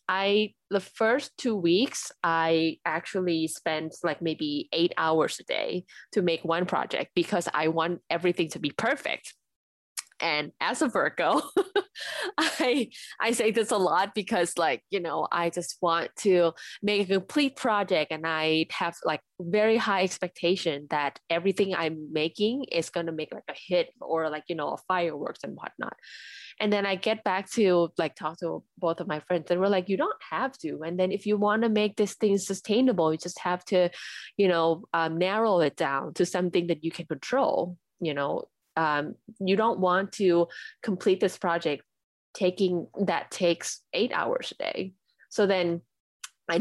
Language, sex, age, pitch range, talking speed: English, female, 10-29, 165-210 Hz, 180 wpm